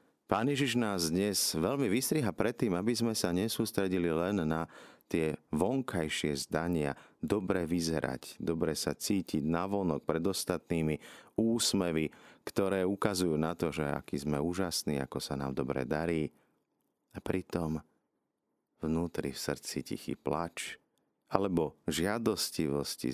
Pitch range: 75-95 Hz